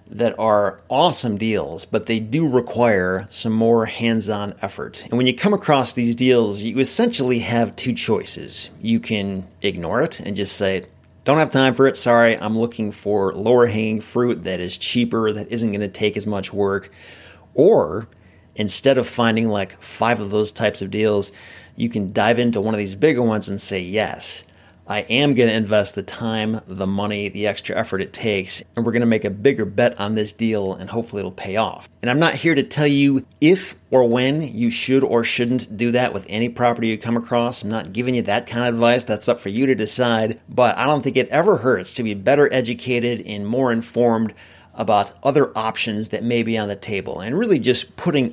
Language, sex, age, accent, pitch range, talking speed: English, male, 30-49, American, 105-125 Hz, 205 wpm